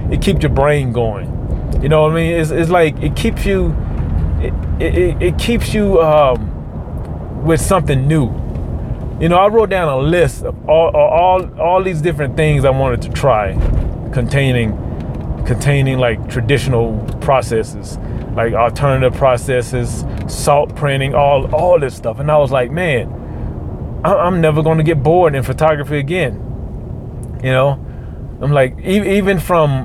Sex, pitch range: male, 110-145 Hz